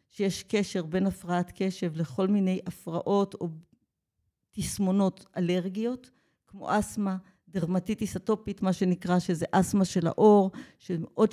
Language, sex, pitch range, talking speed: Hebrew, female, 185-225 Hz, 115 wpm